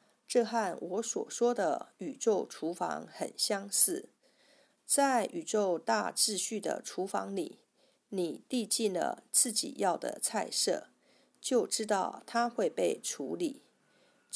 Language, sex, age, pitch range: Chinese, female, 50-69, 215-280 Hz